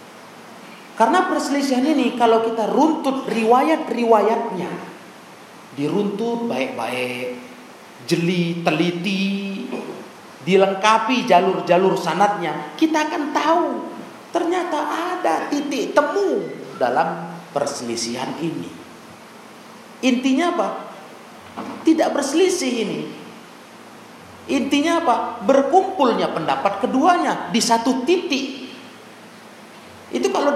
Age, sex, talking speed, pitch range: 40-59, male, 75 wpm, 185-295 Hz